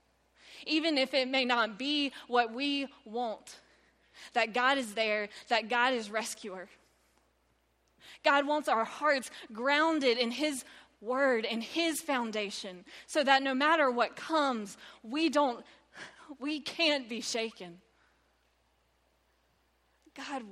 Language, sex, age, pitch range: English, female, 20-39, 205-265 Hz